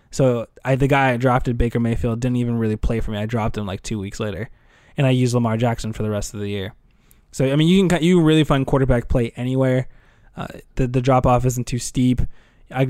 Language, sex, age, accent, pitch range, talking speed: English, male, 20-39, American, 115-140 Hz, 245 wpm